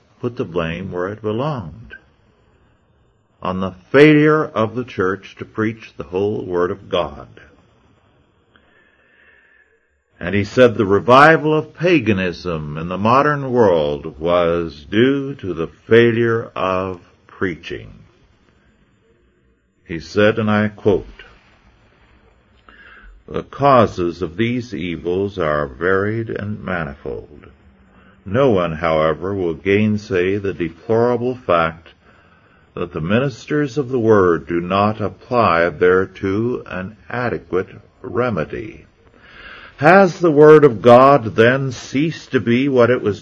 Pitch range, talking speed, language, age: 90-130 Hz, 115 wpm, English, 60-79